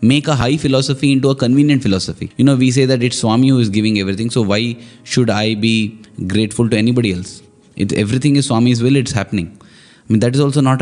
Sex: male